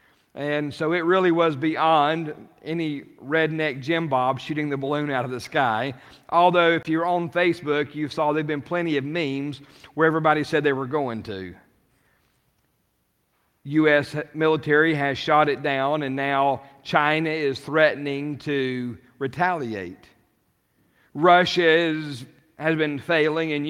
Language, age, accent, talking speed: English, 50-69, American, 140 wpm